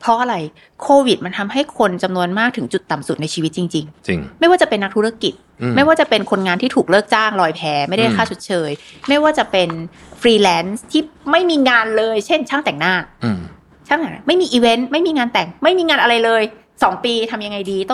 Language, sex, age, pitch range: Thai, female, 20-39, 170-245 Hz